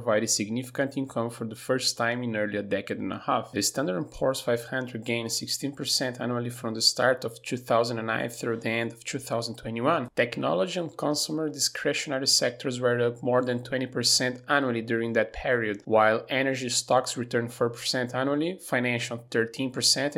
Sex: male